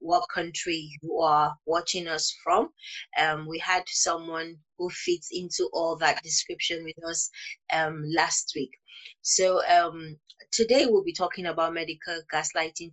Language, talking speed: English, 145 wpm